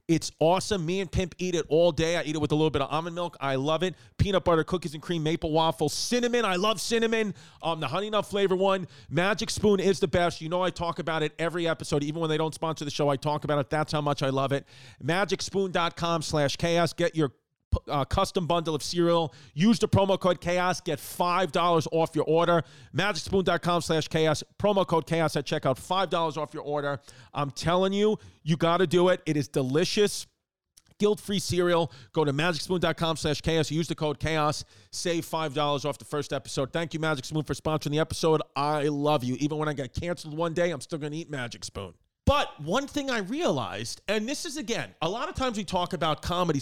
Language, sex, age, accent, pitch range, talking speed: English, male, 40-59, American, 150-185 Hz, 220 wpm